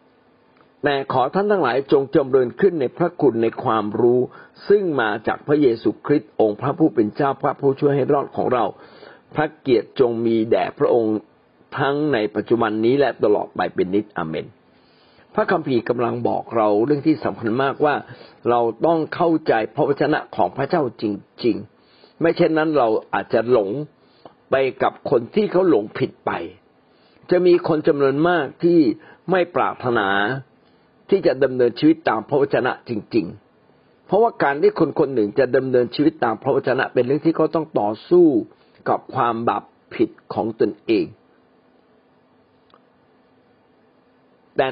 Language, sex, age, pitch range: Thai, male, 60-79, 125-185 Hz